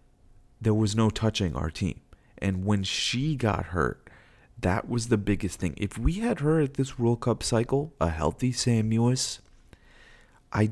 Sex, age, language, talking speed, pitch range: male, 30-49, English, 170 wpm, 80-100 Hz